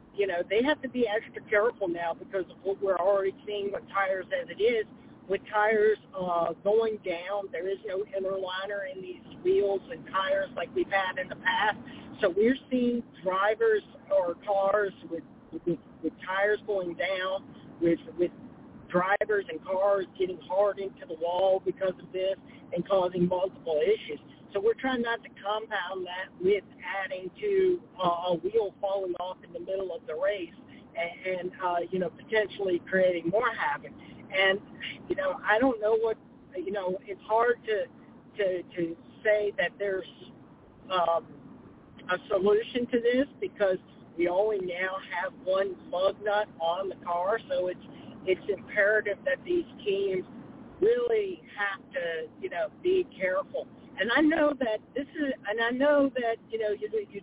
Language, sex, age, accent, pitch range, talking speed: English, male, 40-59, American, 185-250 Hz, 165 wpm